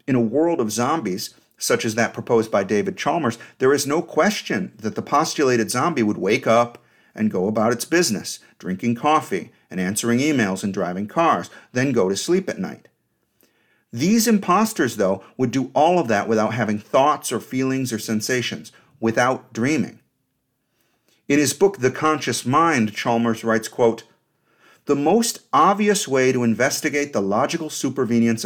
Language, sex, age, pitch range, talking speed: English, male, 50-69, 115-160 Hz, 160 wpm